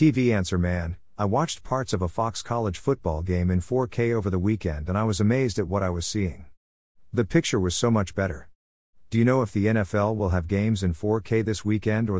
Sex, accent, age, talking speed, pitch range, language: male, American, 50-69, 225 wpm, 90-115 Hz, English